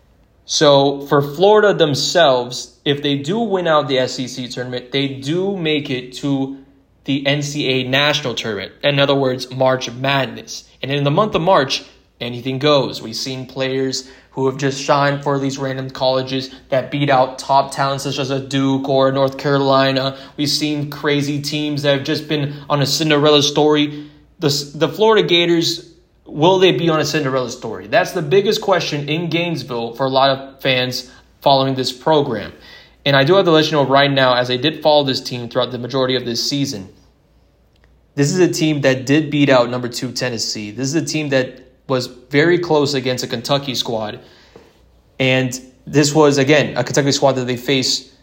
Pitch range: 130-150 Hz